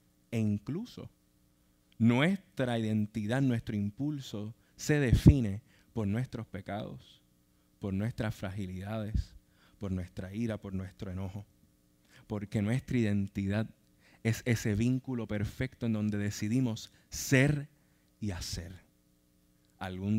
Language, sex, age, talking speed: Spanish, male, 20-39, 100 wpm